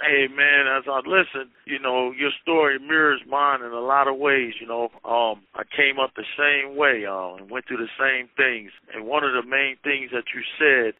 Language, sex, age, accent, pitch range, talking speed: English, male, 50-69, American, 115-140 Hz, 225 wpm